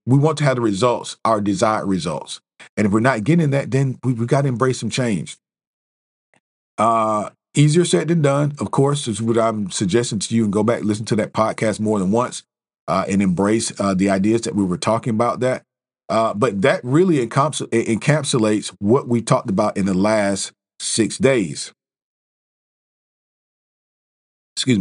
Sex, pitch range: male, 100-120 Hz